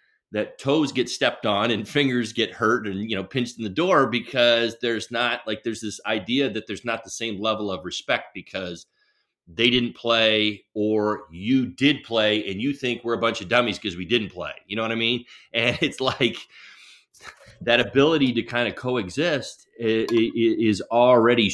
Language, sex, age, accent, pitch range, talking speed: English, male, 30-49, American, 95-120 Hz, 185 wpm